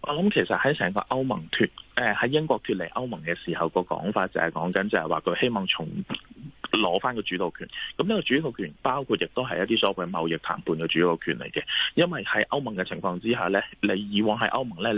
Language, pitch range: Chinese, 90-115 Hz